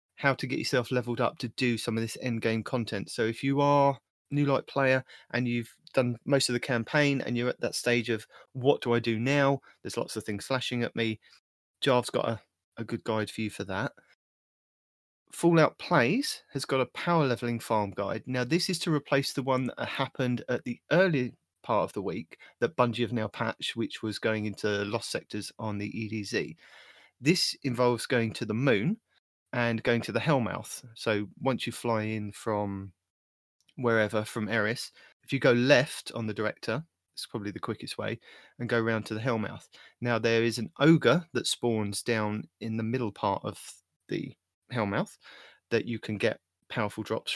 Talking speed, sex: 195 wpm, male